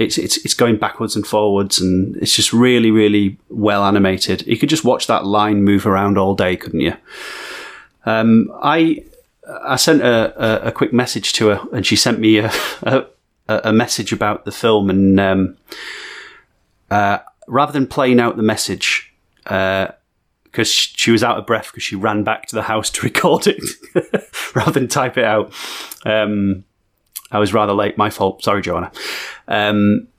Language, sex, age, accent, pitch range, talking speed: English, male, 30-49, British, 100-115 Hz, 180 wpm